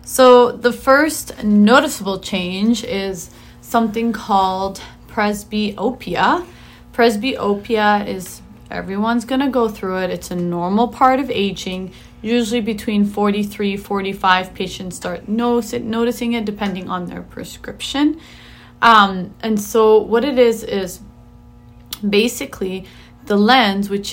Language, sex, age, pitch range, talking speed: English, female, 30-49, 185-220 Hz, 115 wpm